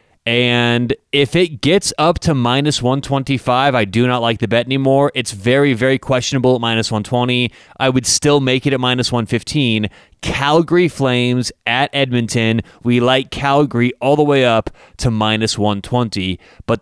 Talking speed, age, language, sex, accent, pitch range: 160 wpm, 30-49, English, male, American, 115-140 Hz